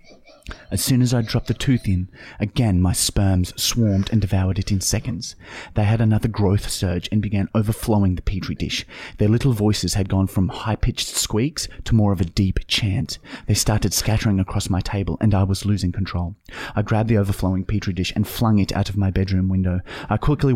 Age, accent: 30-49, Australian